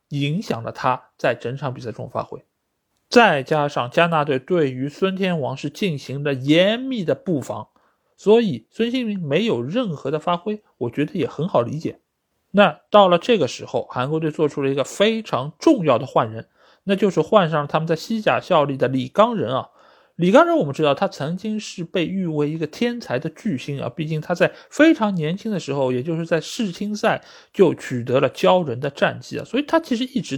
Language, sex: Chinese, male